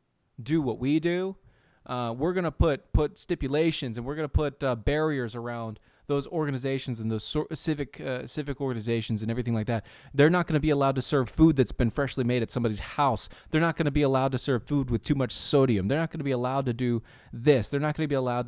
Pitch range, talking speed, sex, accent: 110-150 Hz, 225 wpm, male, American